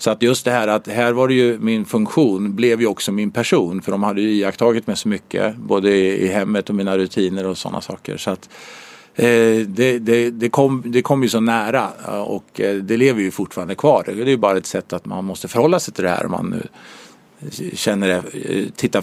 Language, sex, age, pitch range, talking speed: English, male, 50-69, 100-120 Hz, 210 wpm